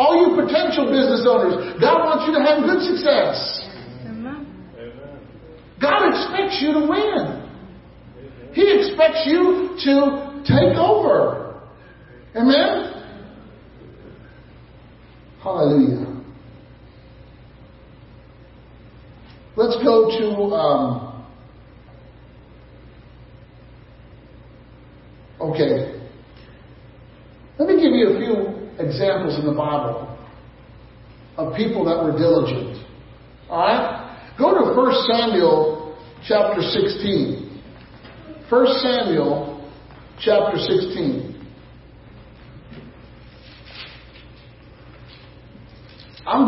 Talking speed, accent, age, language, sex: 75 wpm, American, 50-69, English, male